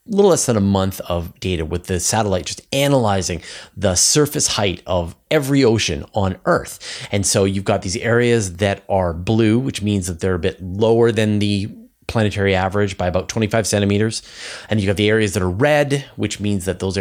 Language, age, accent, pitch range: English, 30-49, American, 95-120 Hz